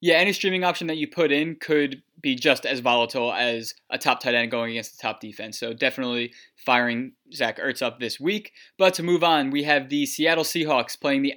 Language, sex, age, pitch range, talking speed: English, male, 20-39, 130-155 Hz, 220 wpm